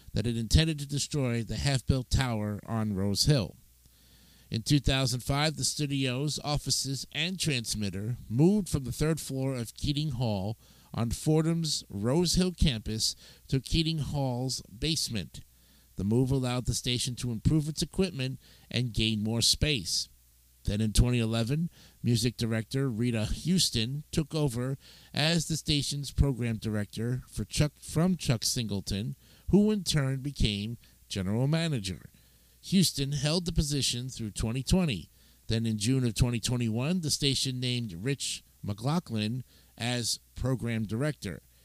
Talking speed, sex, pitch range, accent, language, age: 135 wpm, male, 105-145 Hz, American, English, 50-69